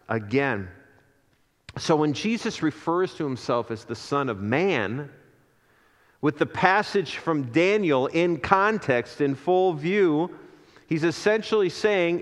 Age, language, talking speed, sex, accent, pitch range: 40-59, English, 125 wpm, male, American, 120-175 Hz